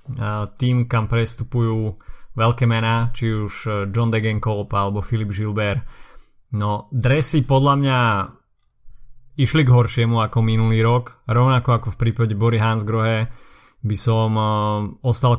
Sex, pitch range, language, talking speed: male, 110-125 Hz, Slovak, 120 wpm